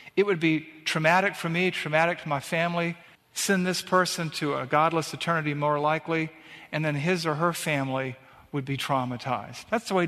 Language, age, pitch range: English, 50-69, 140-175 Hz